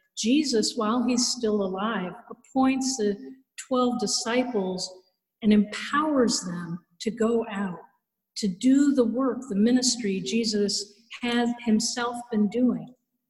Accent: American